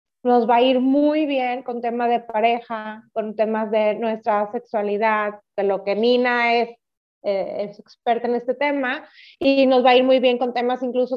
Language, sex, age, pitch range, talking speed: Spanish, female, 30-49, 225-285 Hz, 195 wpm